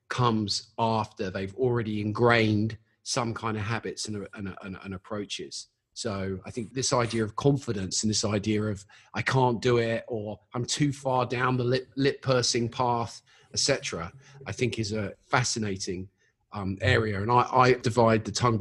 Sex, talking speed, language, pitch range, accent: male, 170 wpm, English, 105-125 Hz, British